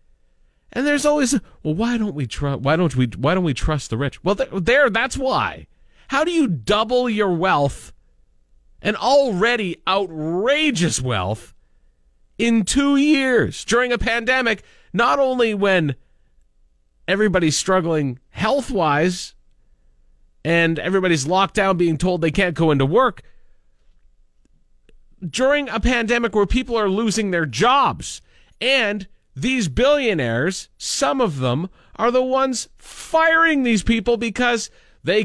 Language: English